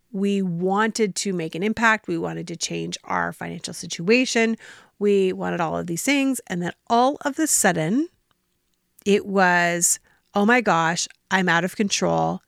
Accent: American